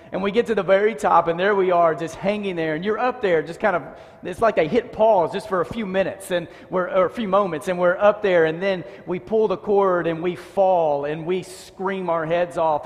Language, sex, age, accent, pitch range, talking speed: English, male, 40-59, American, 175-230 Hz, 250 wpm